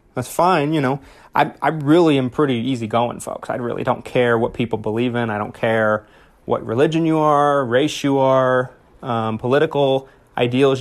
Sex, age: male, 30-49